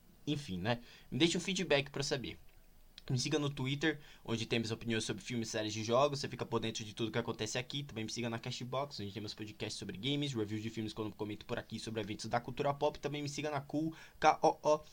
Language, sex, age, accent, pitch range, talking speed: Portuguese, male, 20-39, Brazilian, 120-155 Hz, 245 wpm